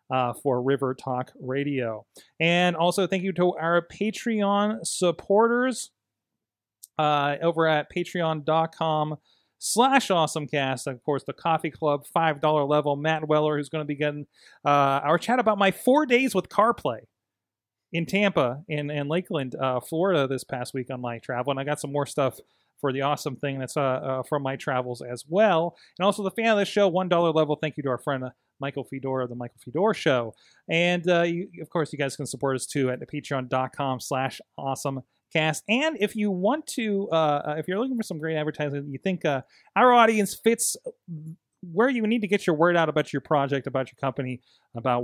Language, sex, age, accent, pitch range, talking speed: English, male, 30-49, American, 135-175 Hz, 195 wpm